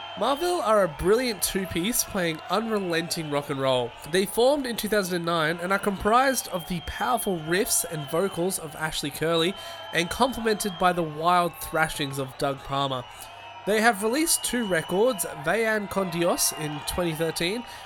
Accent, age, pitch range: Australian, 20-39, 150-200 Hz